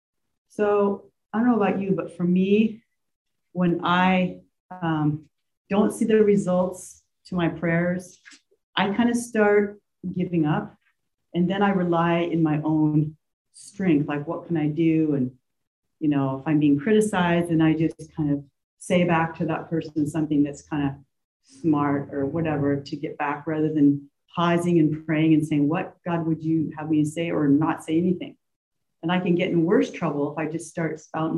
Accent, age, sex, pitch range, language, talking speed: American, 40-59, female, 150-185 Hz, English, 180 wpm